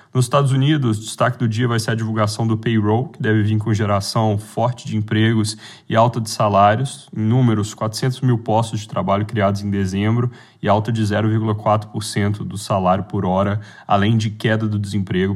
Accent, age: Brazilian, 10-29